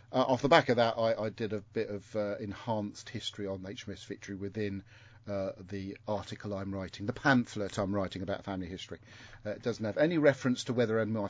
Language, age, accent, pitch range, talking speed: English, 40-59, British, 100-115 Hz, 240 wpm